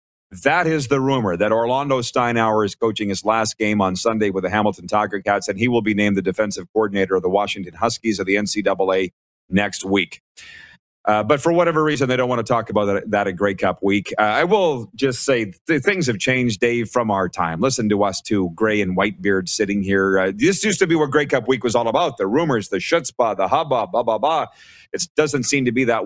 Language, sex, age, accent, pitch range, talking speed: English, male, 30-49, American, 105-135 Hz, 235 wpm